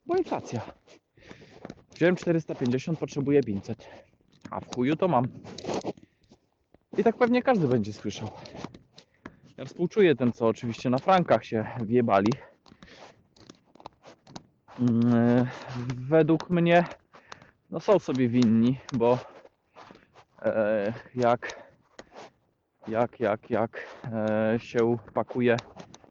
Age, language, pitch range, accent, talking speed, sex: 20-39, Polish, 110-140 Hz, native, 90 wpm, male